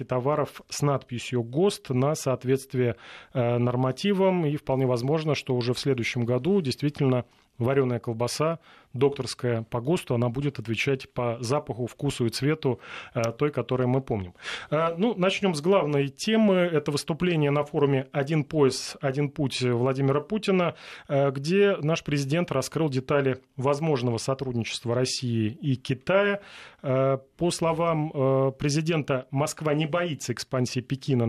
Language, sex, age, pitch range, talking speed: Russian, male, 30-49, 125-155 Hz, 130 wpm